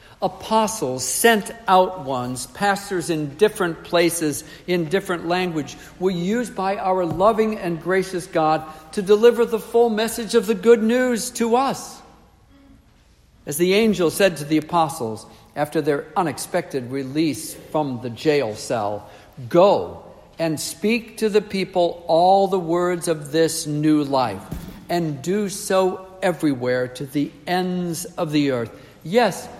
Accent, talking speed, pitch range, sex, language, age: American, 140 wpm, 150-195 Hz, male, English, 60-79